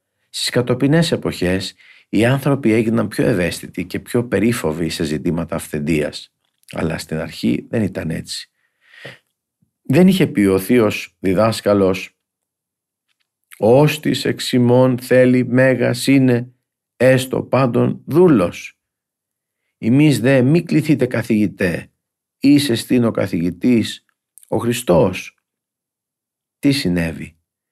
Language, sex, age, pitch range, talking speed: Greek, male, 50-69, 95-125 Hz, 100 wpm